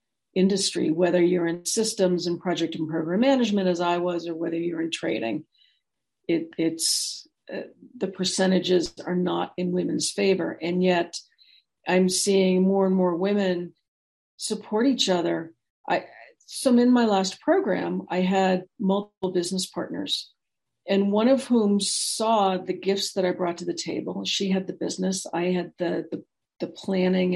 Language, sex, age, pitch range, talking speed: English, female, 50-69, 175-205 Hz, 160 wpm